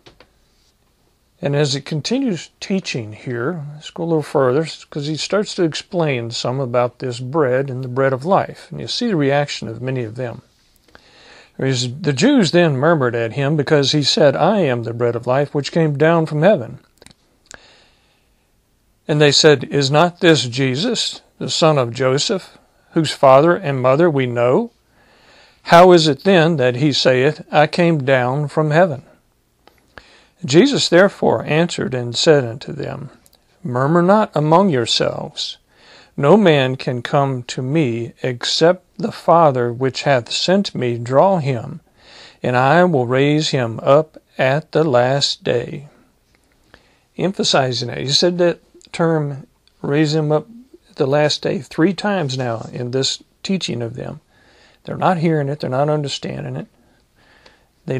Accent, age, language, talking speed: American, 50-69, English, 155 wpm